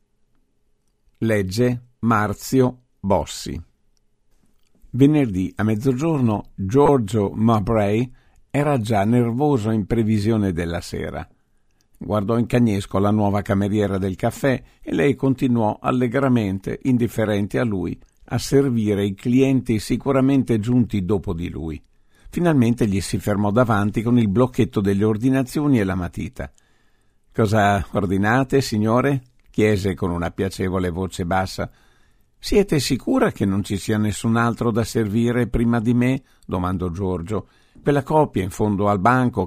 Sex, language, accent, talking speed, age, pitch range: male, Italian, native, 125 wpm, 50-69, 100-125 Hz